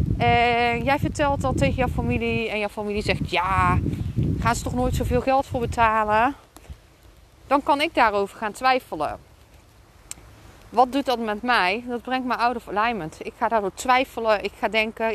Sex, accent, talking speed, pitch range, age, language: female, Dutch, 175 wpm, 220-275 Hz, 30-49, Dutch